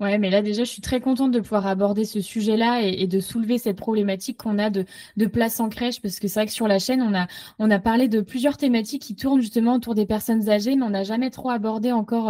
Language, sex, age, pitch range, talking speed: French, female, 20-39, 200-240 Hz, 270 wpm